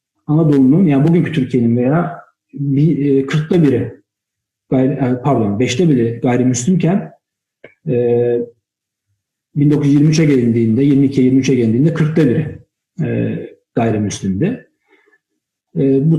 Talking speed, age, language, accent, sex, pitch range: 75 wpm, 50-69, Turkish, native, male, 125-160 Hz